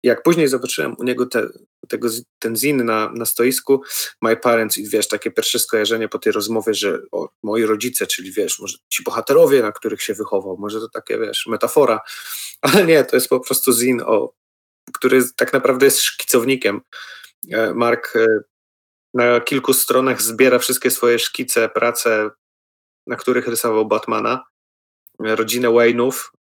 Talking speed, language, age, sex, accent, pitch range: 155 wpm, Polish, 30-49, male, native, 110-135 Hz